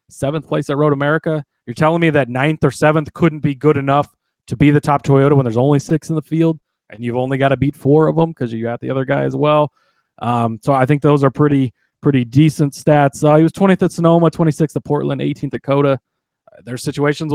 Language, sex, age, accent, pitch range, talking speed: English, male, 30-49, American, 120-150 Hz, 240 wpm